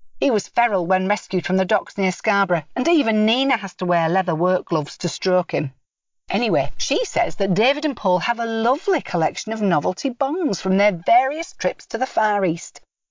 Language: English